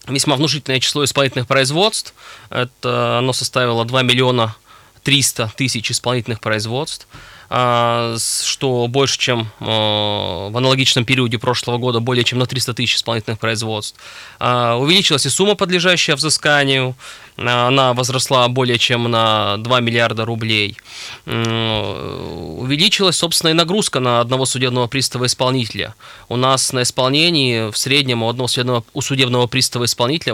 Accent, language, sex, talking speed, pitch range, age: native, Russian, male, 125 wpm, 120-140 Hz, 20-39